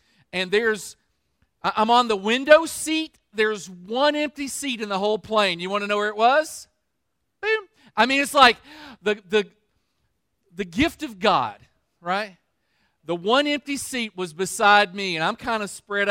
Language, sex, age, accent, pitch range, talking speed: English, male, 40-59, American, 185-230 Hz, 170 wpm